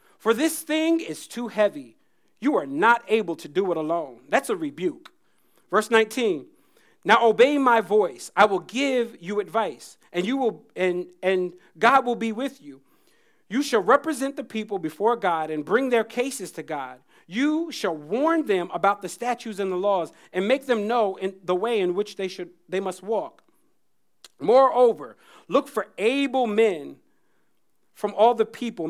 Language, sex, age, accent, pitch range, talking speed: English, male, 40-59, American, 185-265 Hz, 175 wpm